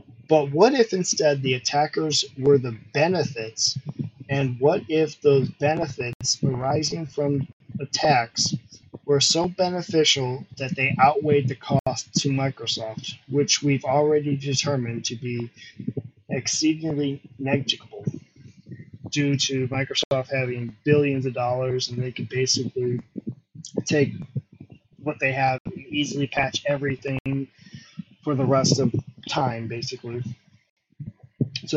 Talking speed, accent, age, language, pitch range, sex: 115 wpm, American, 20-39, English, 130-150 Hz, male